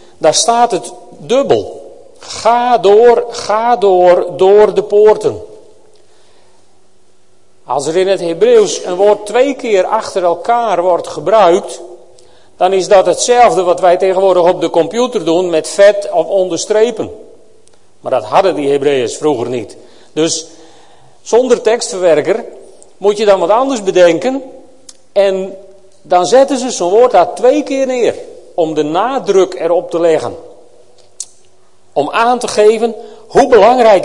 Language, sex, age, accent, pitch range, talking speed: Dutch, male, 40-59, Dutch, 180-255 Hz, 135 wpm